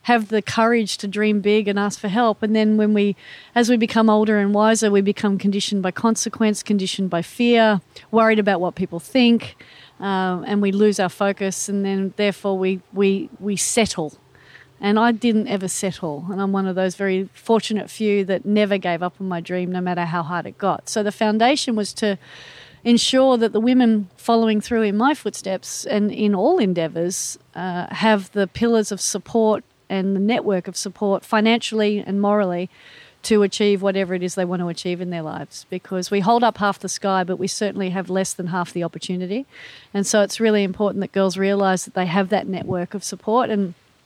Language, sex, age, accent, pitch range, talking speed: English, female, 40-59, Australian, 185-215 Hz, 200 wpm